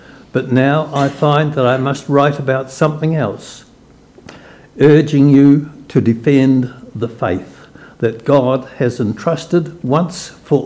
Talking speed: 130 wpm